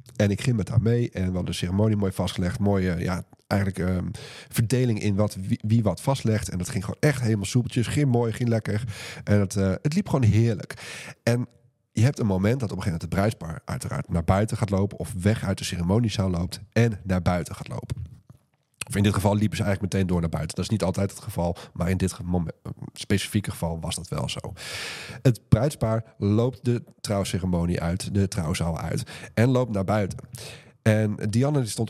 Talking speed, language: 215 wpm, Dutch